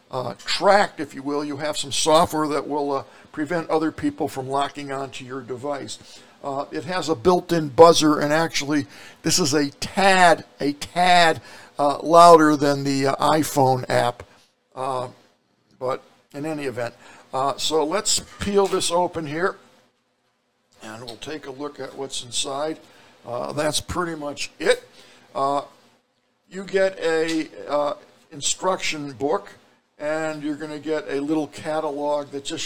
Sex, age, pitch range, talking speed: male, 60-79, 135-165 Hz, 150 wpm